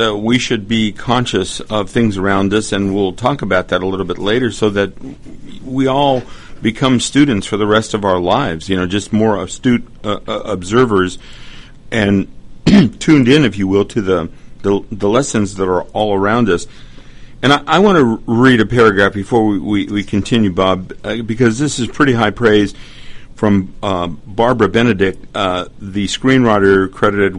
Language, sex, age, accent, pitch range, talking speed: English, male, 50-69, American, 95-120 Hz, 180 wpm